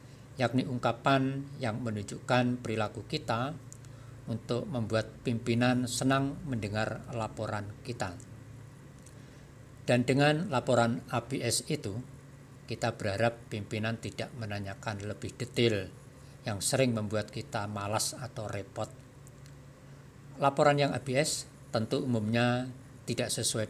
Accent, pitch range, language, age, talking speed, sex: native, 110-130 Hz, Indonesian, 50-69, 100 wpm, male